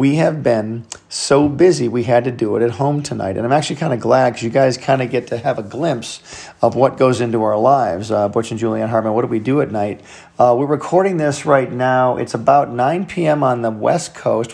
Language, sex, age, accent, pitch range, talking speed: English, male, 40-59, American, 120-155 Hz, 250 wpm